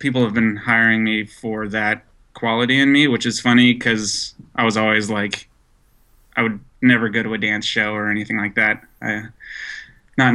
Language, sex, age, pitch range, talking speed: English, male, 20-39, 110-125 Hz, 180 wpm